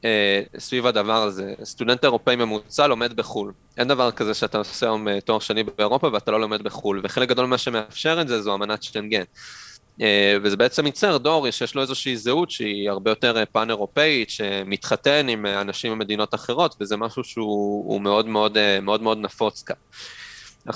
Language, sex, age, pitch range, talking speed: Hebrew, male, 20-39, 105-130 Hz, 170 wpm